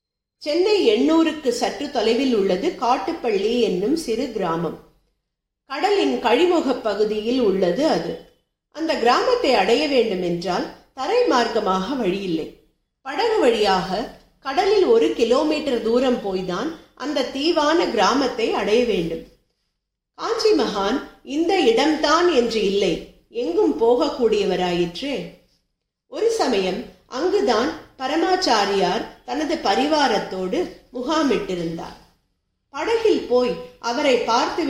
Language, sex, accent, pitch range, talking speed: Tamil, female, native, 220-345 Hz, 85 wpm